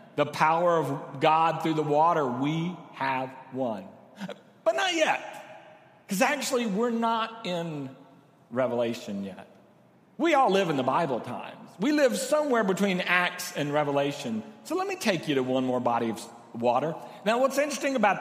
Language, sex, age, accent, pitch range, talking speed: English, male, 40-59, American, 135-190 Hz, 160 wpm